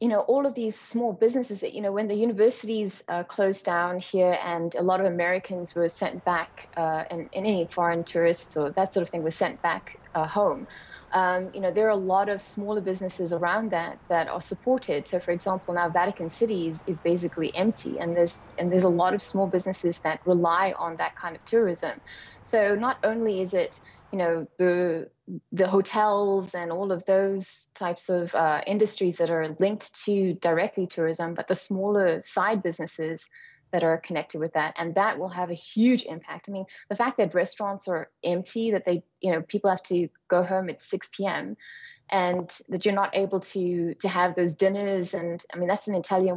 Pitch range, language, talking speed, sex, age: 170-200 Hz, English, 205 wpm, female, 20-39